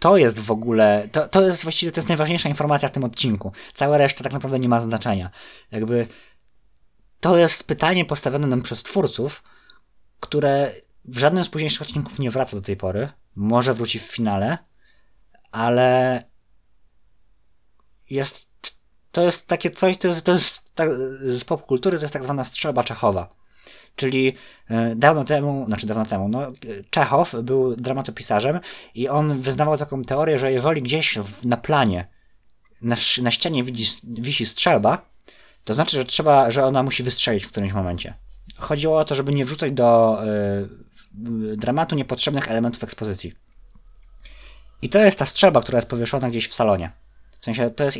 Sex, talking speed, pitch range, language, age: male, 160 wpm, 110-145 Hz, Polish, 20-39